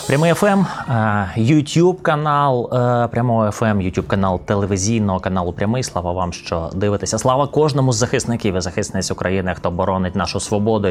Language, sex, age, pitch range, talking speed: Ukrainian, male, 20-39, 95-120 Hz, 130 wpm